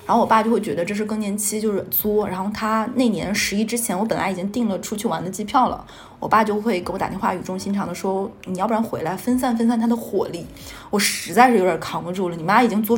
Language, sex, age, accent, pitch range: Chinese, female, 20-39, native, 205-245 Hz